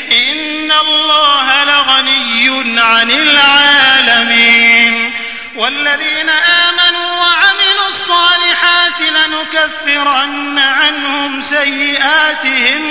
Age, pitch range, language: 30-49, 235-305 Hz, Arabic